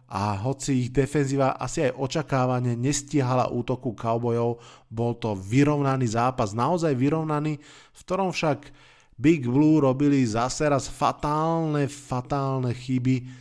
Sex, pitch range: male, 120-140 Hz